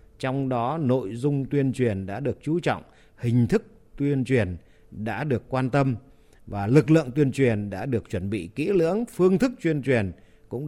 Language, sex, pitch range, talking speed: Vietnamese, male, 105-145 Hz, 190 wpm